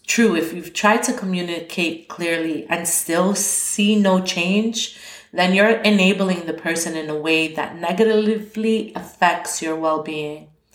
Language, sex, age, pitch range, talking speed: English, female, 30-49, 150-185 Hz, 145 wpm